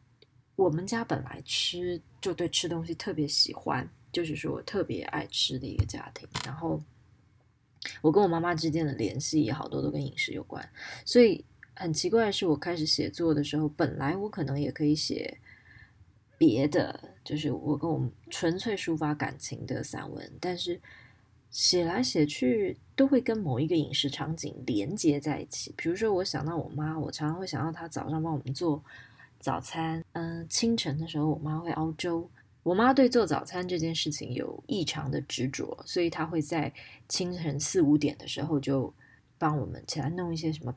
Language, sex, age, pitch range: Chinese, female, 20-39, 140-170 Hz